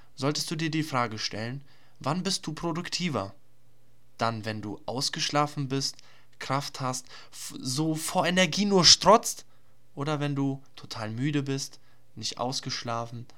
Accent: German